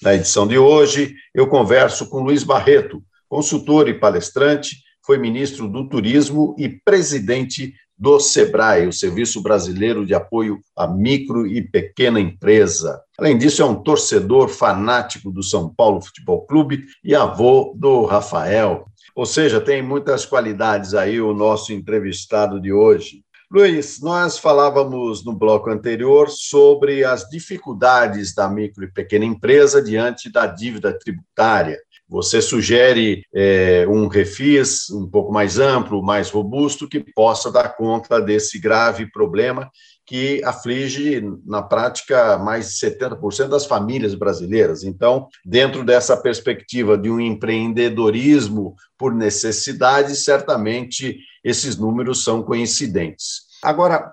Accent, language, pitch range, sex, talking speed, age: Brazilian, Portuguese, 110-150 Hz, male, 130 wpm, 50-69